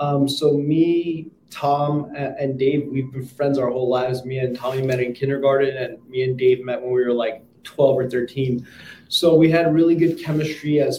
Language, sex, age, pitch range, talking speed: English, male, 20-39, 130-150 Hz, 200 wpm